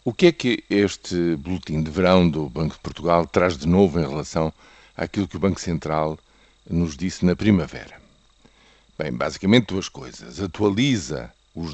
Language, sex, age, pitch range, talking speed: Portuguese, male, 50-69, 80-105 Hz, 165 wpm